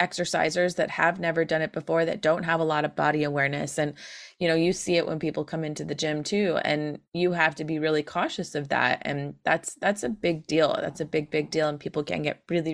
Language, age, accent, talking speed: English, 20-39, American, 250 wpm